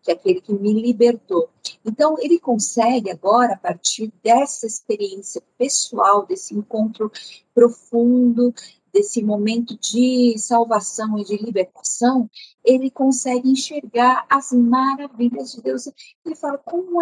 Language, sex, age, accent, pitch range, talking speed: Portuguese, female, 50-69, Brazilian, 210-260 Hz, 125 wpm